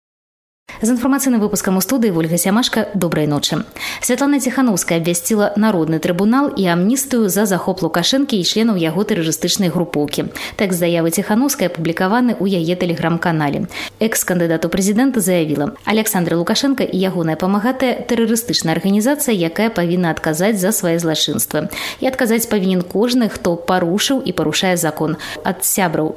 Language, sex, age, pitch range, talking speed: Polish, female, 20-39, 170-220 Hz, 140 wpm